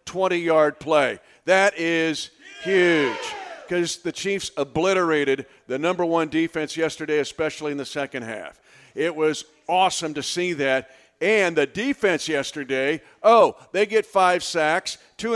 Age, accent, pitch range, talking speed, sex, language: 50-69, American, 155-190 Hz, 135 wpm, male, English